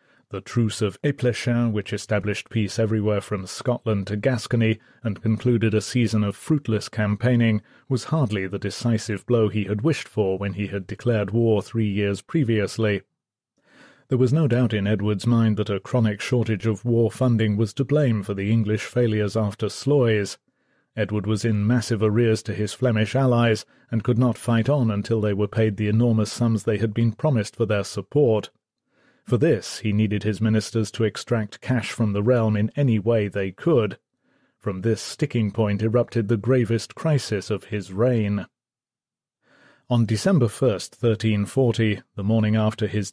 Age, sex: 30-49, male